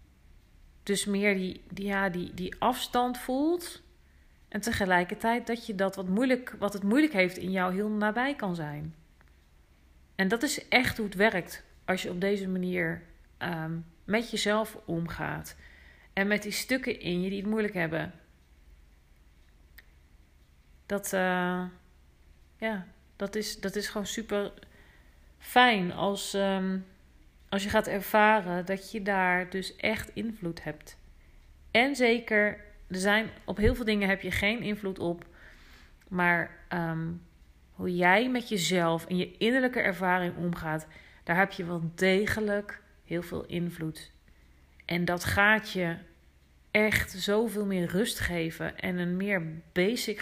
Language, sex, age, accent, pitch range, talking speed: Dutch, female, 40-59, Dutch, 155-210 Hz, 145 wpm